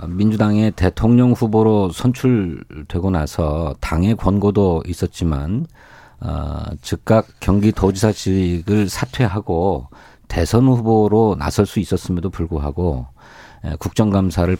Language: Korean